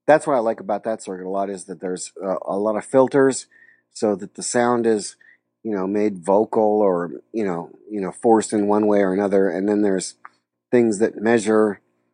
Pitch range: 100-120 Hz